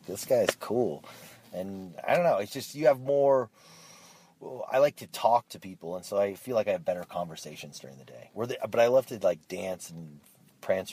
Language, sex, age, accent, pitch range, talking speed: English, male, 30-49, American, 80-110 Hz, 210 wpm